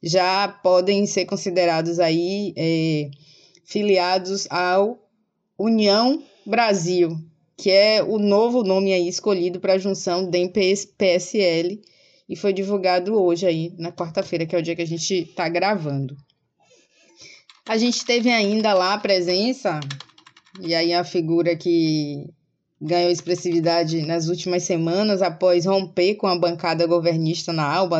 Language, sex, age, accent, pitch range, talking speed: Portuguese, female, 20-39, Brazilian, 175-205 Hz, 130 wpm